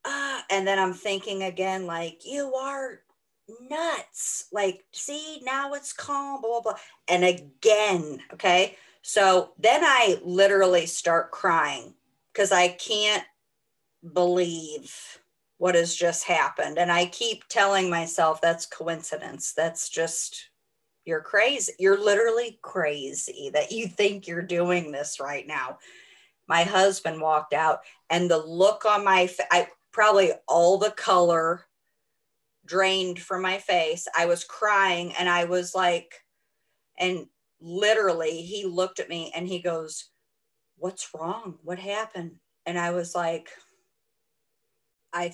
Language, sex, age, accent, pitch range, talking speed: English, female, 40-59, American, 170-210 Hz, 130 wpm